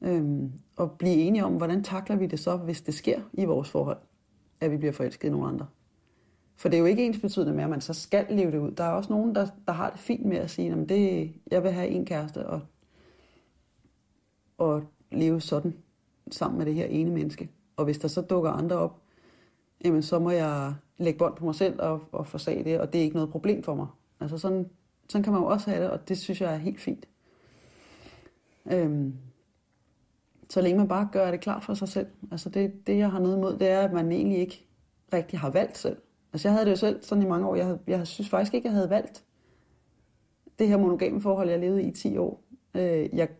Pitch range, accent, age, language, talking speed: 160-195 Hz, native, 30-49, Danish, 230 wpm